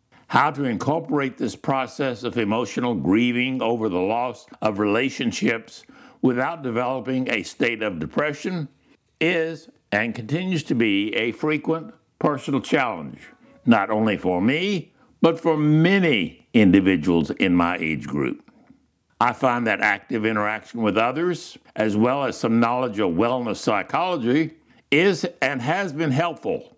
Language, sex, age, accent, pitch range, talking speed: English, male, 60-79, American, 115-160 Hz, 135 wpm